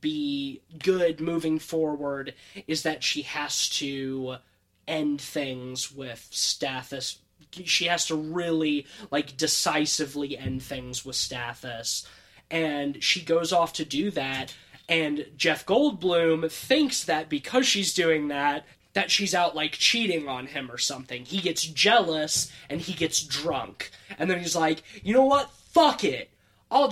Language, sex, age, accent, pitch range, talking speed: English, male, 20-39, American, 145-180 Hz, 145 wpm